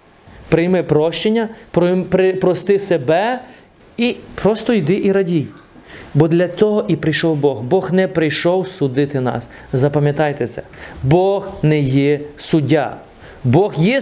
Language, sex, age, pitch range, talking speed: Ukrainian, male, 30-49, 150-210 Hz, 120 wpm